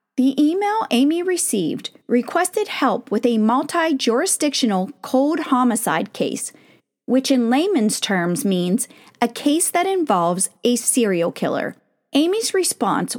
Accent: American